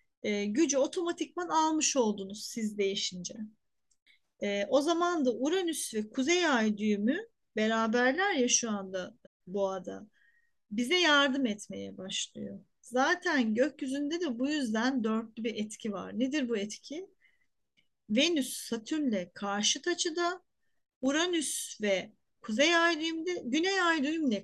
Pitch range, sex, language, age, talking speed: 220-300 Hz, female, Turkish, 40-59, 120 wpm